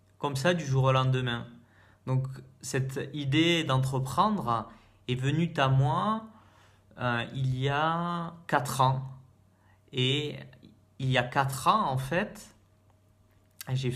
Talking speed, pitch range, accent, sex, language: 125 wpm, 125-155 Hz, French, male, French